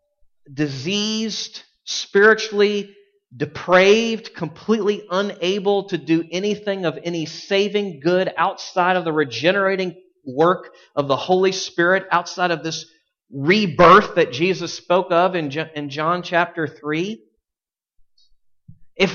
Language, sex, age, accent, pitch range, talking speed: English, male, 40-59, American, 160-205 Hz, 105 wpm